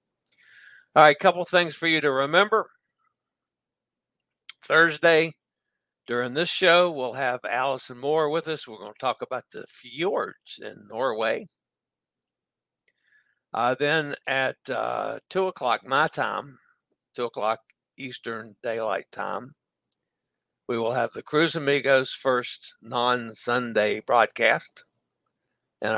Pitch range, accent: 125-160 Hz, American